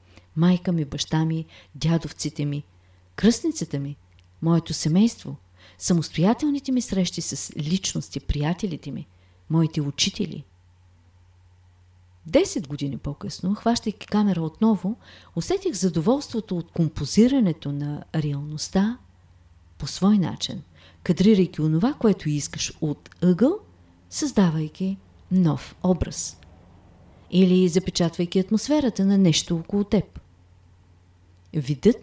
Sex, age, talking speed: female, 40-59, 95 wpm